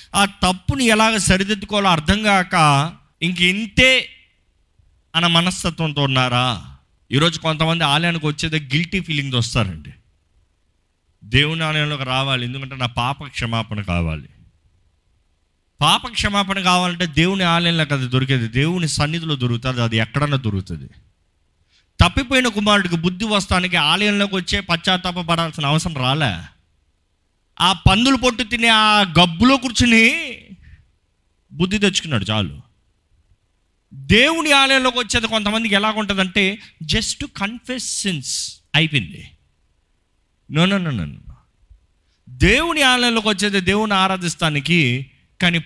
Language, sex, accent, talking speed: Telugu, male, native, 95 wpm